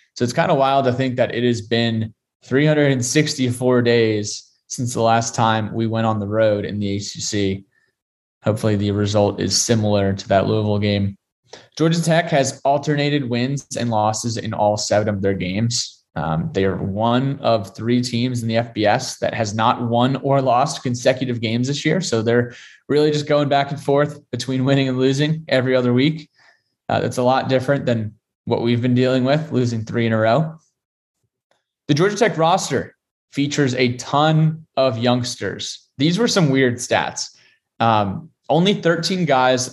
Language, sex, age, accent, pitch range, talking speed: English, male, 20-39, American, 110-140 Hz, 175 wpm